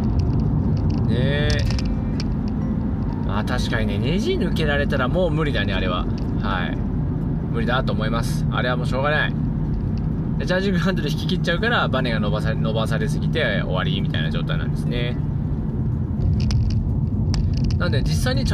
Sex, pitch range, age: male, 105-125 Hz, 20-39